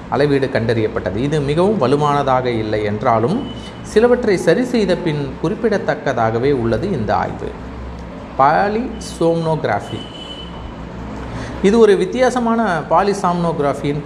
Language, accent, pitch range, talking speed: Tamil, native, 130-175 Hz, 75 wpm